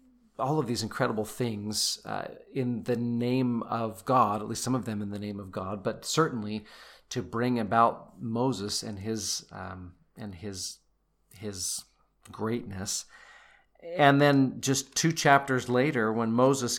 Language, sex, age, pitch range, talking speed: English, male, 40-59, 105-125 Hz, 145 wpm